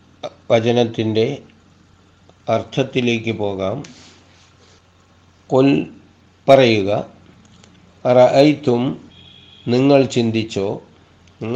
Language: Malayalam